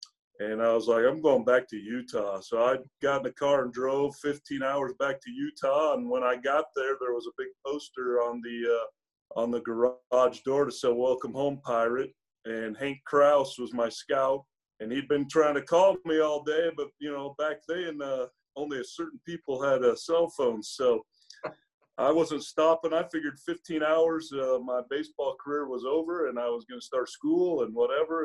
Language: English